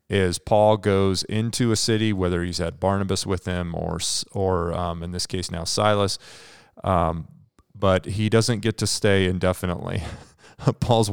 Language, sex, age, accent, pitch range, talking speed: English, male, 30-49, American, 90-105 Hz, 155 wpm